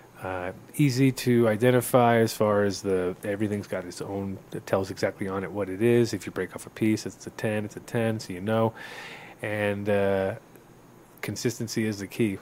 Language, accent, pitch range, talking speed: English, American, 100-120 Hz, 205 wpm